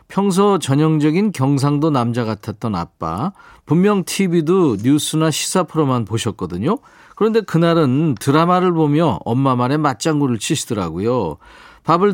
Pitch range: 110-160 Hz